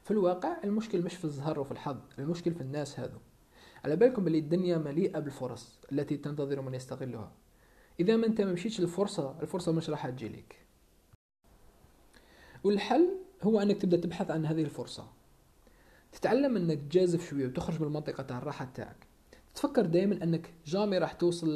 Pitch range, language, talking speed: 145-190 Hz, Arabic, 155 wpm